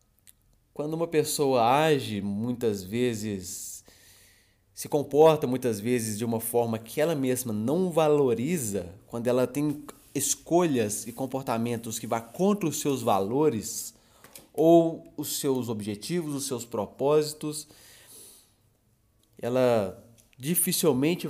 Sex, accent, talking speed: male, Brazilian, 110 wpm